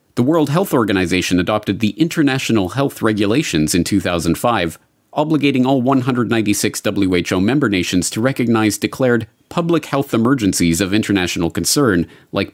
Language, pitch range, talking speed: English, 90-125 Hz, 130 wpm